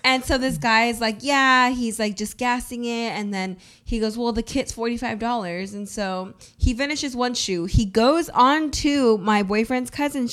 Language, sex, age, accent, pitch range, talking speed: English, female, 20-39, American, 210-270 Hz, 190 wpm